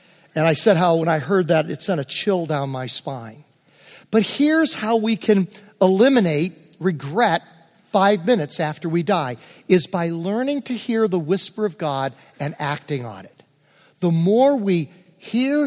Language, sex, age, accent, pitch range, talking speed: English, male, 50-69, American, 160-215 Hz, 170 wpm